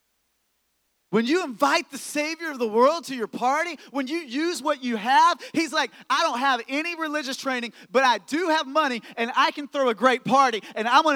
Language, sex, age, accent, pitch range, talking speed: English, male, 30-49, American, 210-270 Hz, 215 wpm